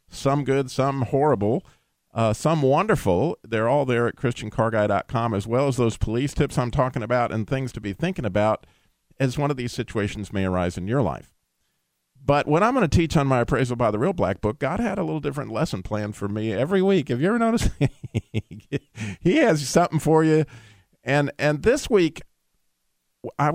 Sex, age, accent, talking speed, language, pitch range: male, 50-69, American, 195 wpm, English, 105-150 Hz